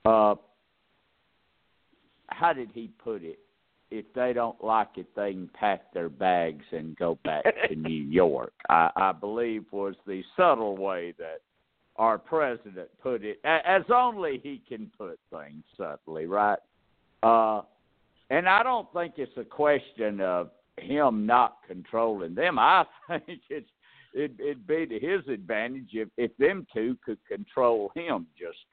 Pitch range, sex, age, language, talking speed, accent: 90-150 Hz, male, 60-79, English, 150 wpm, American